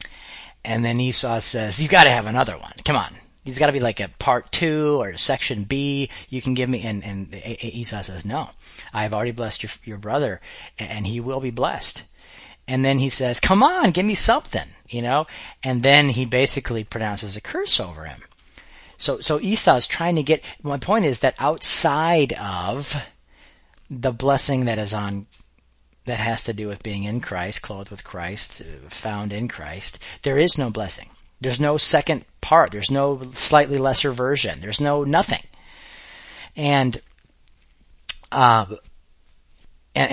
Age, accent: 40-59, American